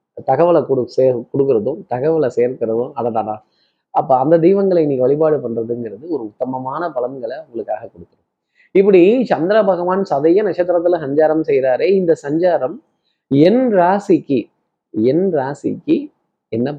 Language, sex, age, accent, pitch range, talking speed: Tamil, male, 20-39, native, 135-190 Hz, 110 wpm